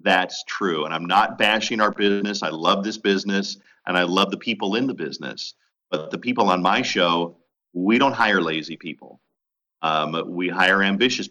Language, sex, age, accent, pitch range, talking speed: English, male, 40-59, American, 90-115 Hz, 185 wpm